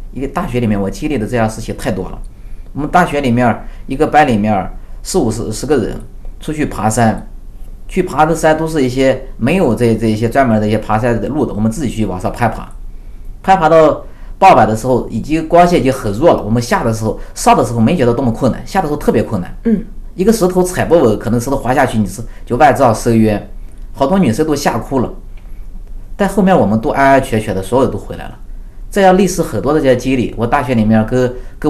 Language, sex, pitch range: Chinese, male, 110-140 Hz